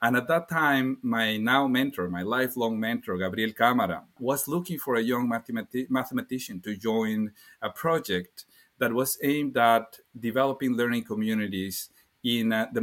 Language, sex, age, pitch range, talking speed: English, male, 30-49, 105-135 Hz, 155 wpm